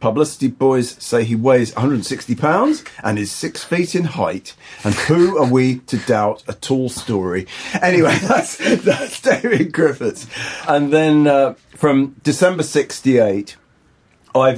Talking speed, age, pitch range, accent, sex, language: 135 wpm, 40-59, 105-135 Hz, British, male, English